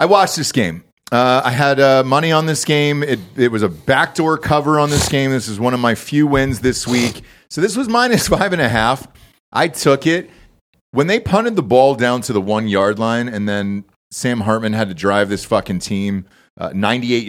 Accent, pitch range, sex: American, 105-145 Hz, male